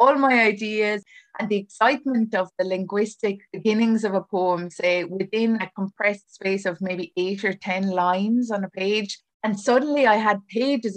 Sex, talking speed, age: female, 175 wpm, 20-39